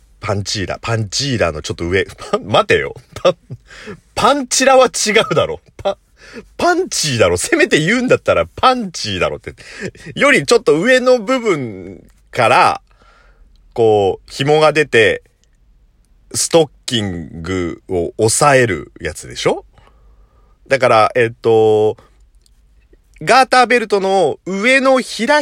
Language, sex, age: Japanese, male, 40-59